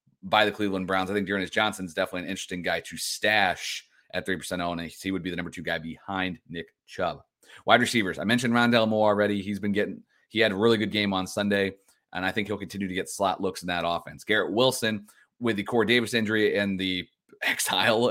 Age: 30-49